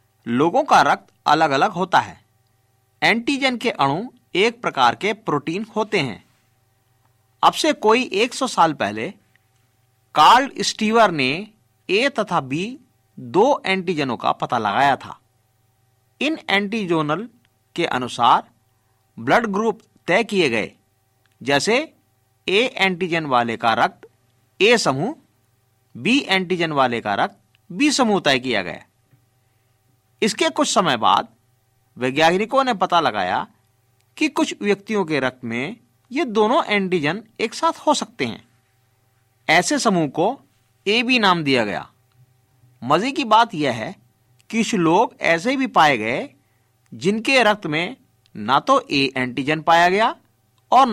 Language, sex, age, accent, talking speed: Hindi, male, 50-69, native, 135 wpm